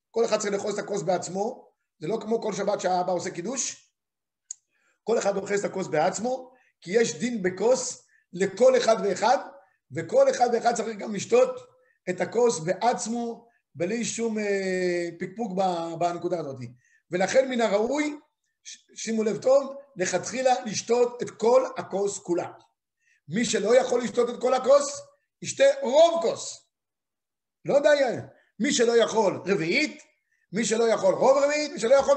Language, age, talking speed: Hebrew, 50-69, 145 wpm